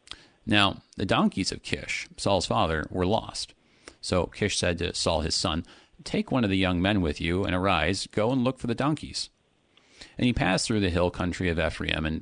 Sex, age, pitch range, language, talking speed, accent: male, 40-59, 85-115 Hz, English, 205 wpm, American